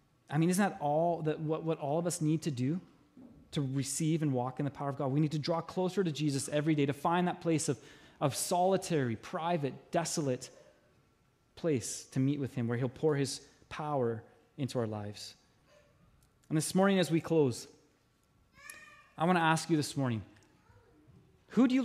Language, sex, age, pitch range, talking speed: English, male, 20-39, 140-195 Hz, 190 wpm